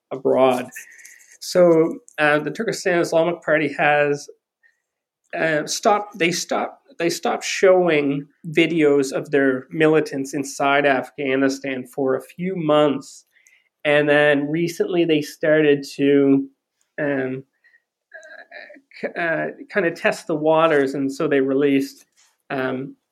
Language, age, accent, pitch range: English, 30-49, American, 135-160 Hz